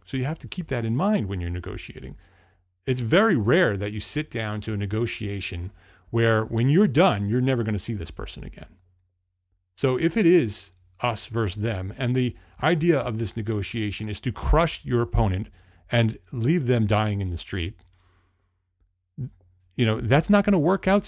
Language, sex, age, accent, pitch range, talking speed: English, male, 30-49, American, 90-125 Hz, 190 wpm